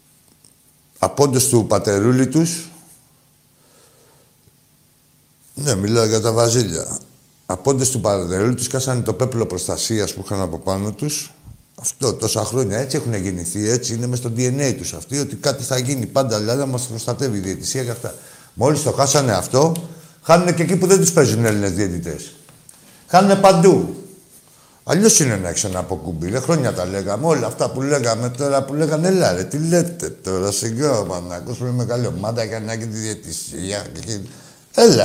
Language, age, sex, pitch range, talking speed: Greek, 60-79, male, 105-145 Hz, 150 wpm